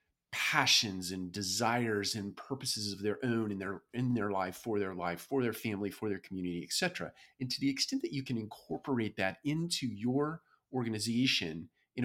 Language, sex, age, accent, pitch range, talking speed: English, male, 40-59, American, 100-135 Hz, 180 wpm